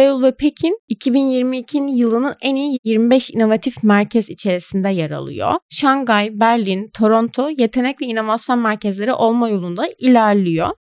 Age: 20-39